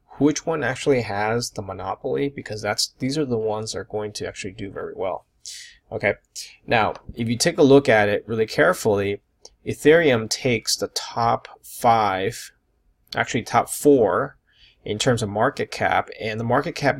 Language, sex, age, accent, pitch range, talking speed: English, male, 20-39, American, 105-125 Hz, 165 wpm